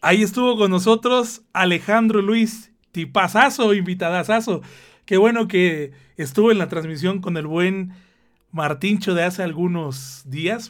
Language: Spanish